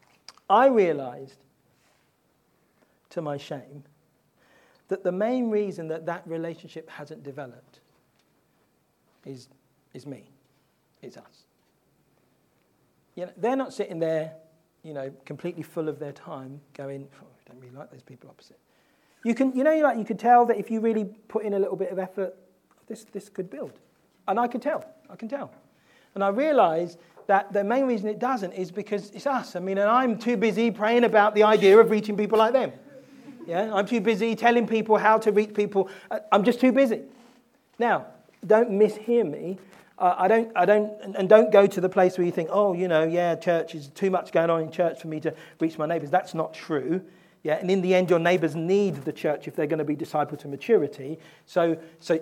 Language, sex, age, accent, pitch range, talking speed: English, male, 40-59, British, 165-220 Hz, 200 wpm